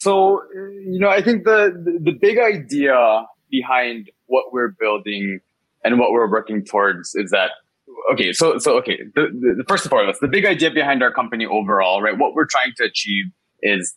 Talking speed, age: 195 wpm, 20-39